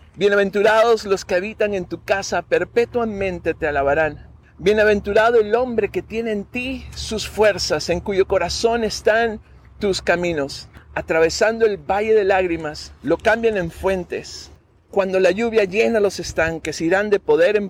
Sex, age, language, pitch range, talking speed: male, 50-69, Spanish, 170-220 Hz, 150 wpm